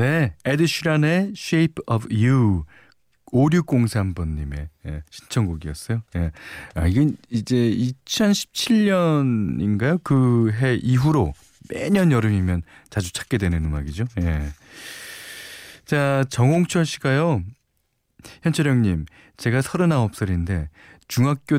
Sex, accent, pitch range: male, native, 90-145 Hz